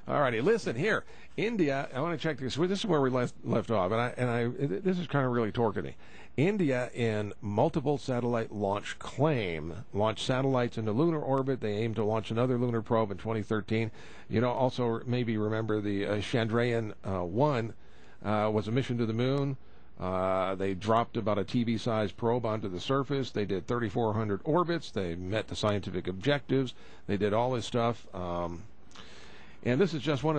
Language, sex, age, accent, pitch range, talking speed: English, male, 50-69, American, 100-125 Hz, 190 wpm